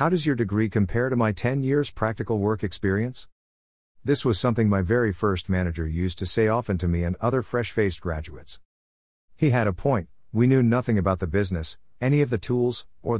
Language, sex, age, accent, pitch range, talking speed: English, male, 50-69, American, 90-115 Hz, 200 wpm